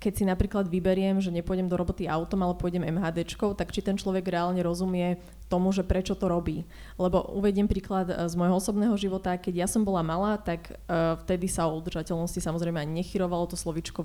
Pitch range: 175-200 Hz